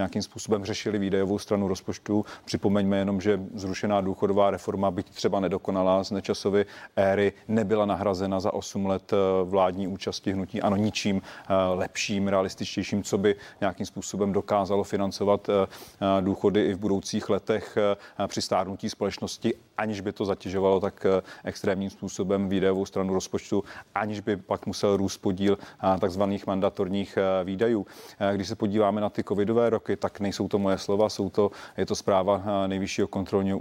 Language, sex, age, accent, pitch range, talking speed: Czech, male, 40-59, native, 100-110 Hz, 145 wpm